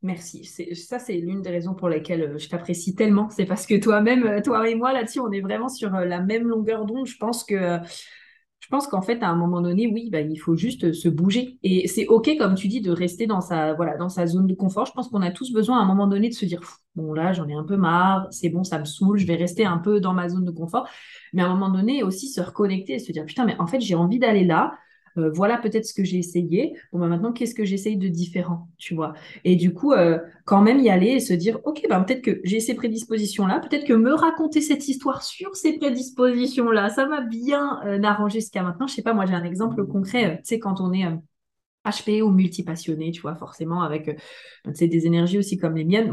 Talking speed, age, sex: 260 wpm, 20-39, female